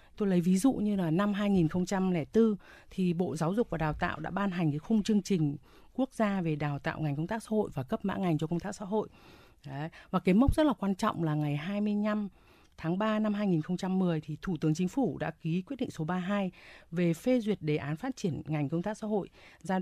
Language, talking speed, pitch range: Vietnamese, 240 wpm, 155-200 Hz